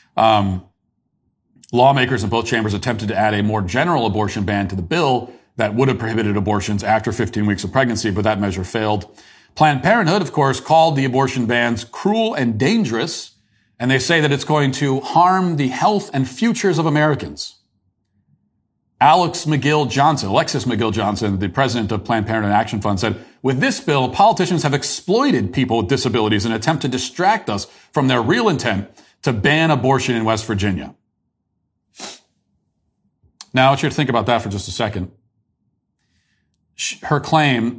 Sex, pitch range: male, 110-145 Hz